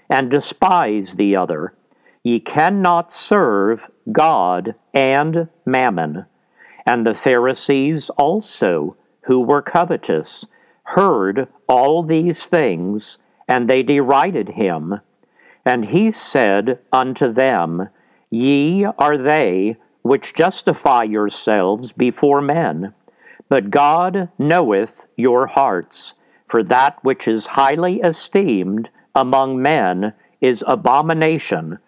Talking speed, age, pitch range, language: 100 wpm, 50-69, 120-160 Hz, English